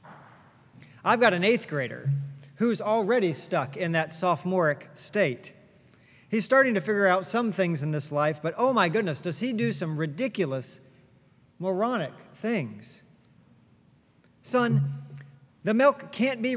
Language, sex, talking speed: English, male, 140 wpm